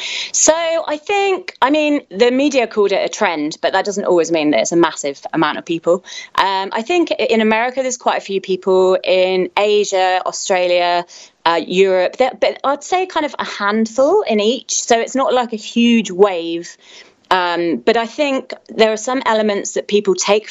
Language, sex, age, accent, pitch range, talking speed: English, female, 30-49, British, 175-225 Hz, 190 wpm